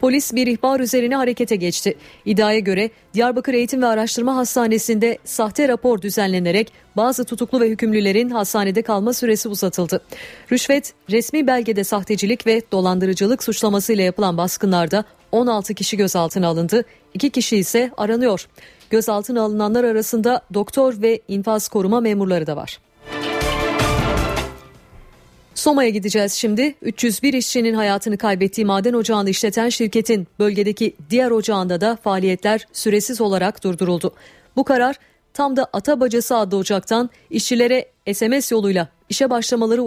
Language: Turkish